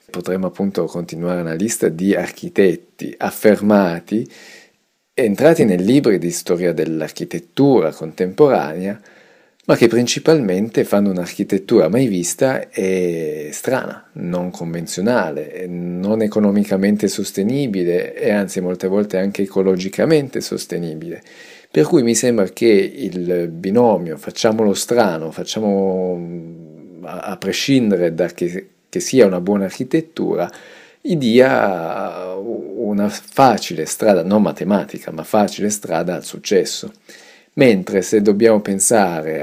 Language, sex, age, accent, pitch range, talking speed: Italian, male, 40-59, native, 85-105 Hz, 110 wpm